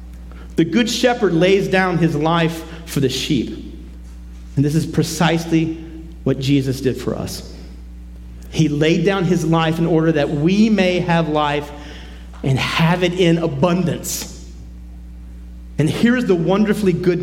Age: 40-59